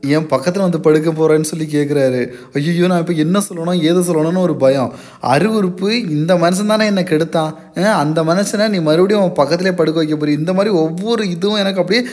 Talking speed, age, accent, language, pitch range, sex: 185 wpm, 20-39, native, Tamil, 150-200 Hz, male